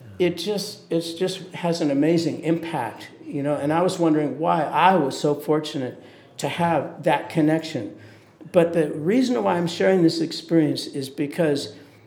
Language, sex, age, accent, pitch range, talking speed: English, male, 50-69, American, 145-165 Hz, 165 wpm